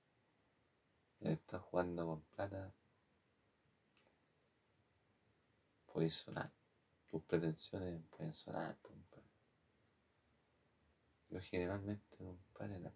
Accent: Italian